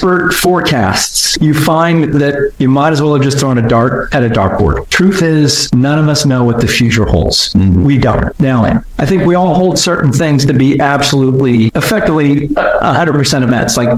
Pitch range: 125-155 Hz